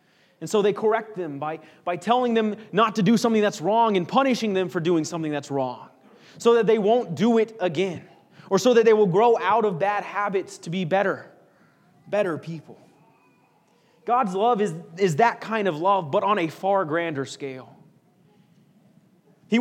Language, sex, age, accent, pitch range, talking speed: English, male, 30-49, American, 165-215 Hz, 185 wpm